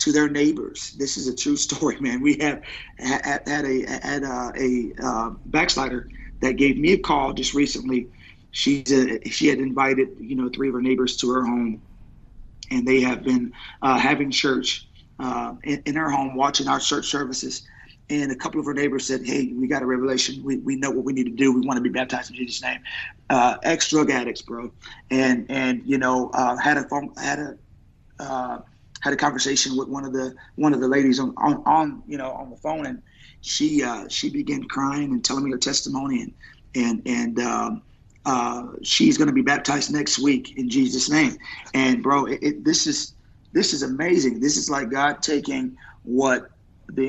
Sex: male